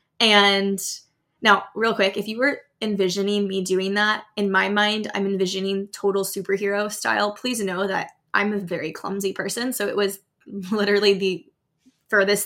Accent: American